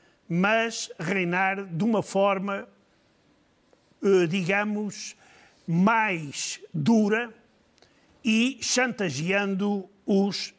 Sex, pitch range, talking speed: male, 180-225 Hz, 60 wpm